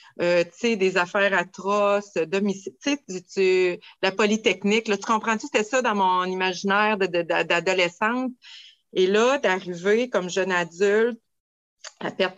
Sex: female